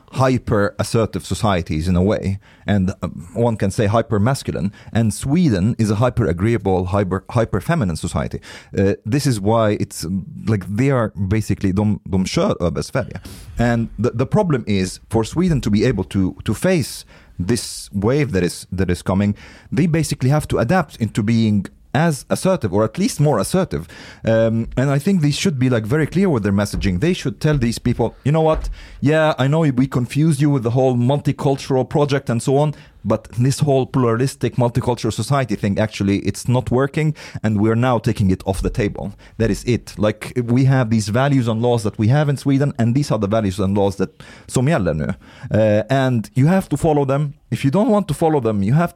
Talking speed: 200 wpm